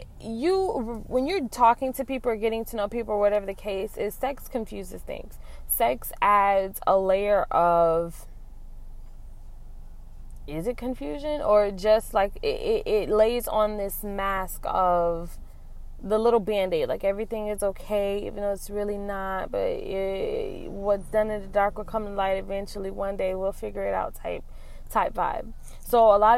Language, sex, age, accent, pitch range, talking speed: English, female, 20-39, American, 180-225 Hz, 170 wpm